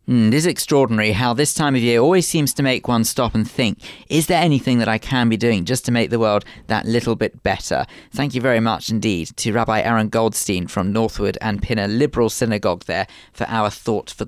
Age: 40-59